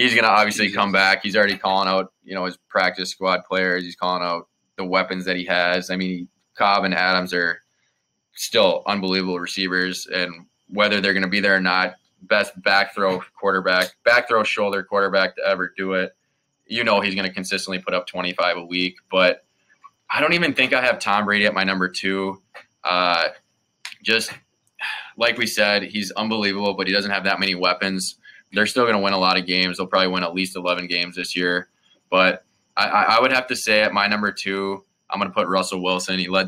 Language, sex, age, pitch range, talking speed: English, male, 20-39, 90-100 Hz, 210 wpm